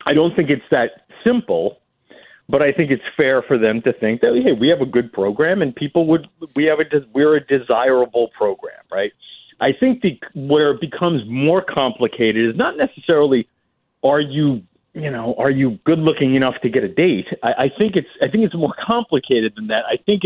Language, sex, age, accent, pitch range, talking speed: English, male, 40-59, American, 120-180 Hz, 205 wpm